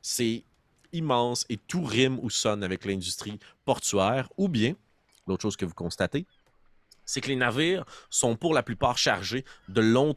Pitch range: 90-120 Hz